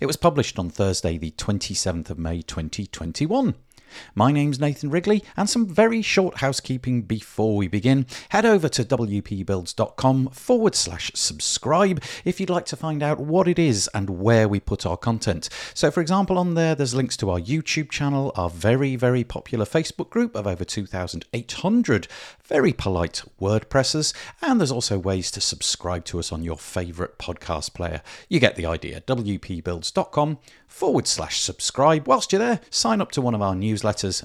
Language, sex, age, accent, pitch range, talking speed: English, male, 50-69, British, 100-155 Hz, 170 wpm